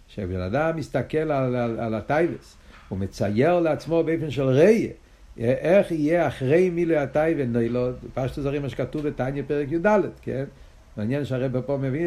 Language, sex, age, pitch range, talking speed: Hebrew, male, 60-79, 125-165 Hz, 150 wpm